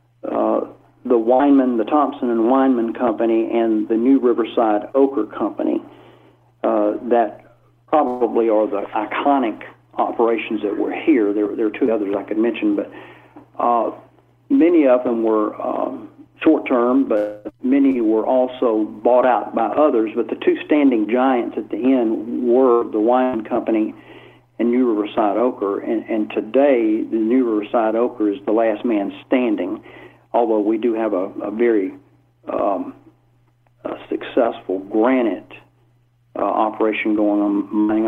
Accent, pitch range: American, 110-155 Hz